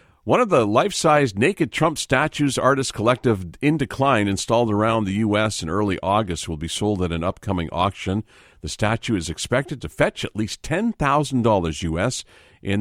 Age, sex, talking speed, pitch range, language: 50-69, male, 175 wpm, 95-135 Hz, English